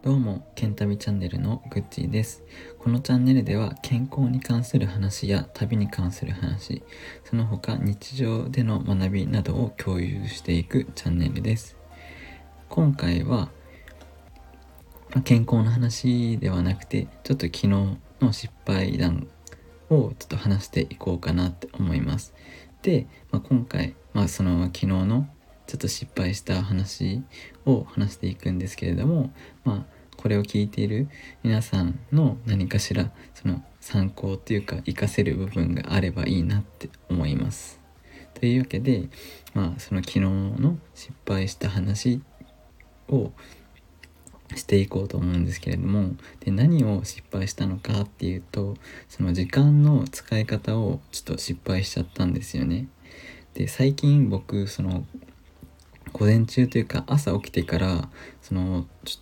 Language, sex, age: Japanese, male, 20-39